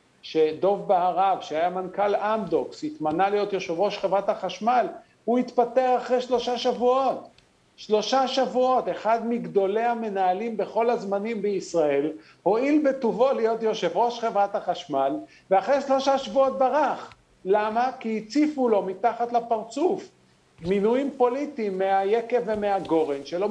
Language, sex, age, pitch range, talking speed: Hebrew, male, 50-69, 185-240 Hz, 115 wpm